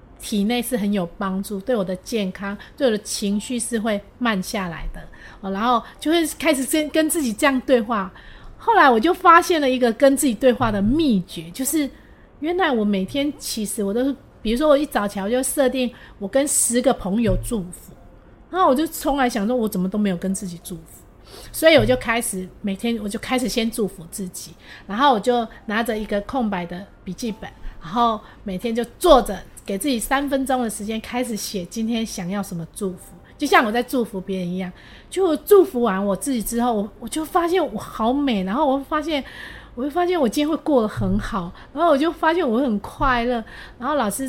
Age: 30-49